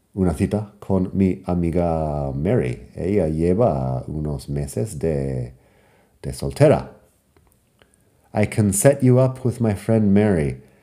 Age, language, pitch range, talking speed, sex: 40-59, Spanish, 90-125 Hz, 120 wpm, male